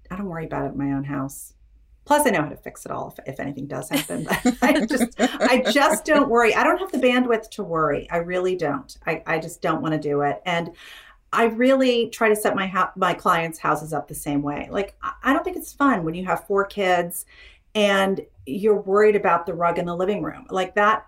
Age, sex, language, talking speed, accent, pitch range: 40-59, female, English, 240 wpm, American, 165-220 Hz